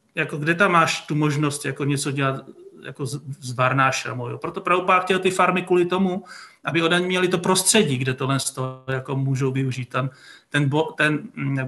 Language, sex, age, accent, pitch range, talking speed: Czech, male, 40-59, native, 145-175 Hz, 190 wpm